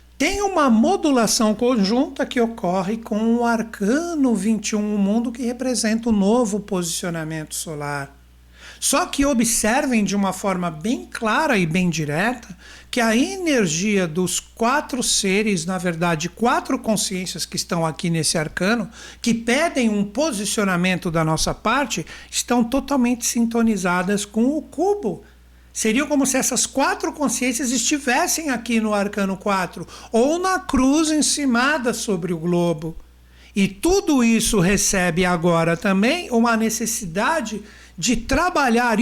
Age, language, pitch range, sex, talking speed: 60-79, Portuguese, 195-265 Hz, male, 130 wpm